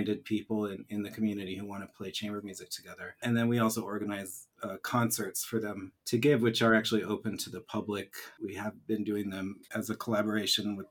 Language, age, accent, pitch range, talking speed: English, 30-49, American, 105-120 Hz, 215 wpm